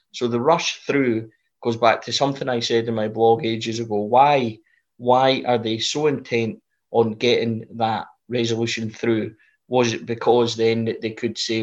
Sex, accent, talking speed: male, British, 170 wpm